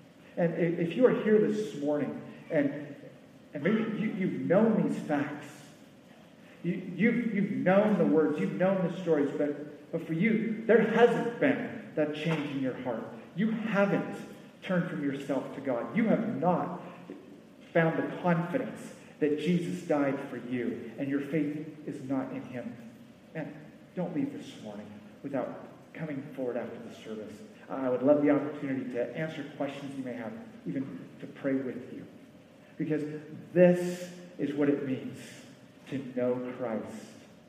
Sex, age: male, 40-59